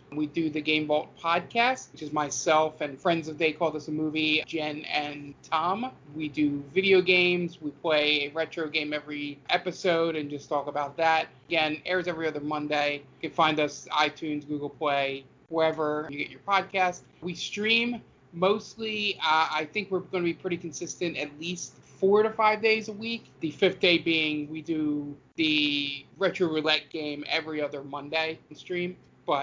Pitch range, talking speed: 150-180 Hz, 180 wpm